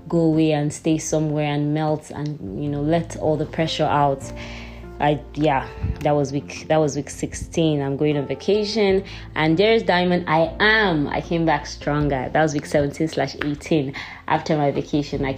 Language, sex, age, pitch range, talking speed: English, female, 20-39, 140-175 Hz, 185 wpm